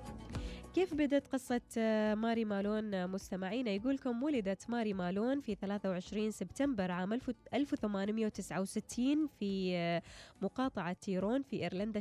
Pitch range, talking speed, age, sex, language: 190-250 Hz, 100 wpm, 20-39, female, Arabic